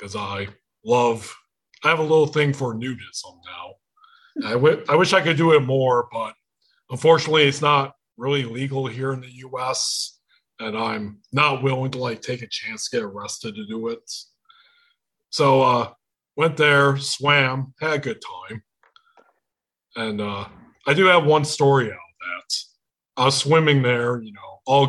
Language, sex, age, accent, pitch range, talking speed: English, male, 30-49, American, 125-165 Hz, 170 wpm